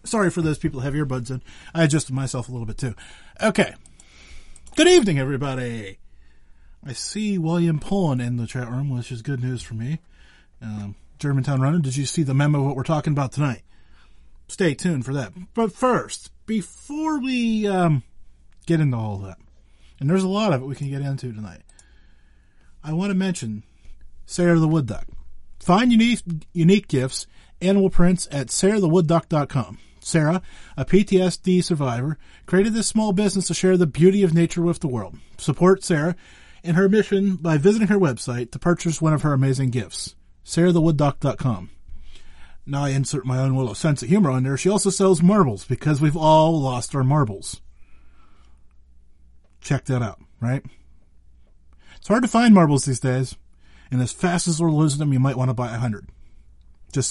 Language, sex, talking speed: English, male, 180 wpm